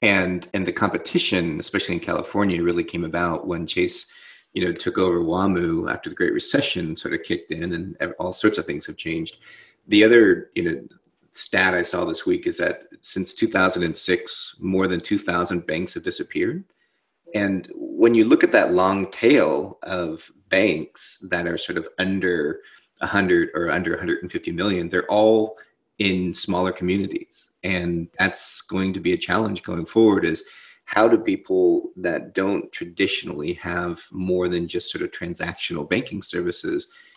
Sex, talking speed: male, 165 wpm